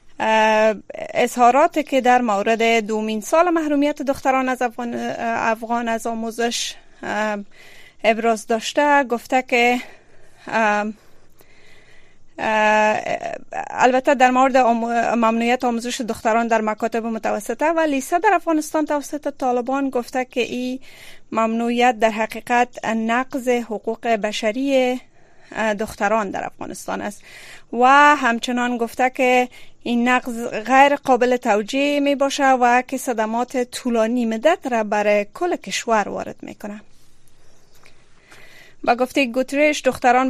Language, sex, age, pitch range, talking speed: Persian, female, 30-49, 225-275 Hz, 105 wpm